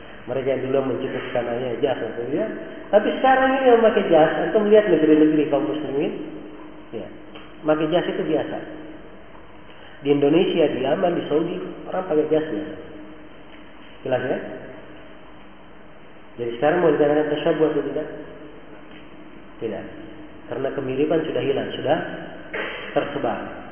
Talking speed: 115 wpm